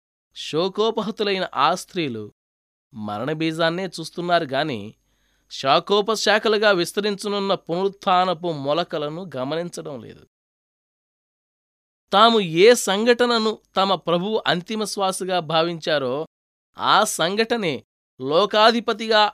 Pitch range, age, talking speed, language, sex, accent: 155-210 Hz, 20-39, 70 wpm, Telugu, male, native